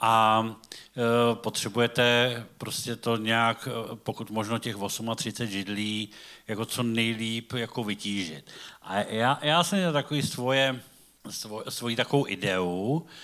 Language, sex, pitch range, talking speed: Czech, male, 105-125 Hz, 105 wpm